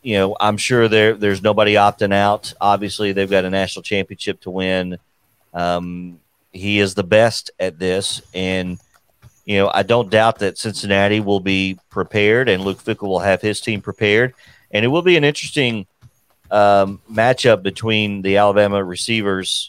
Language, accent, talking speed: English, American, 170 wpm